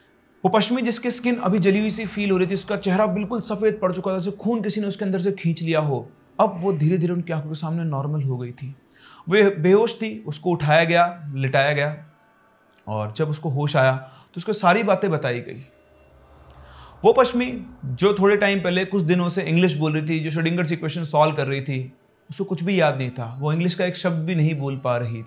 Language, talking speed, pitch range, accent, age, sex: Hindi, 230 wpm, 145-195 Hz, native, 30-49, male